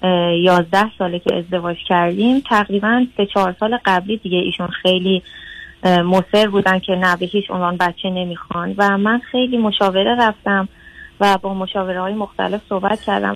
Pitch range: 180-220 Hz